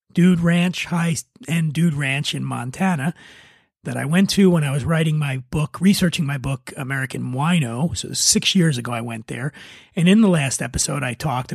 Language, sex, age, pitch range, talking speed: English, male, 30-49, 145-185 Hz, 185 wpm